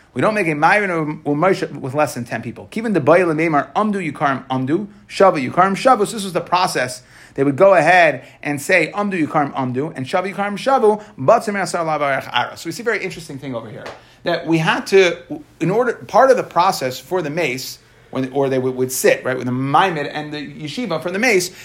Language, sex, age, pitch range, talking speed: English, male, 30-49, 145-195 Hz, 220 wpm